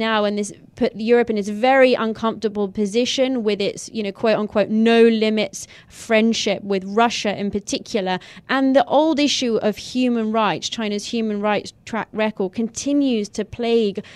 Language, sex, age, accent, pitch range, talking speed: English, female, 30-49, British, 205-250 Hz, 160 wpm